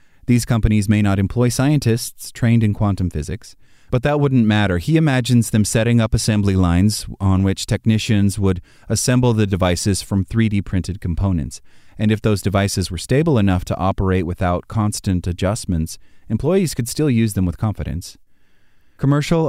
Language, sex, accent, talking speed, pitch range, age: English, male, American, 155 wpm, 95-120 Hz, 30-49